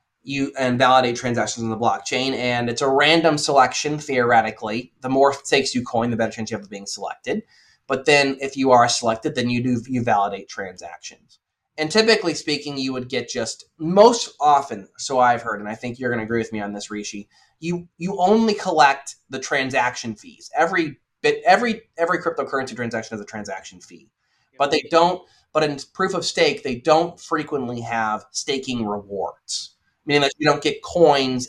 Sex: male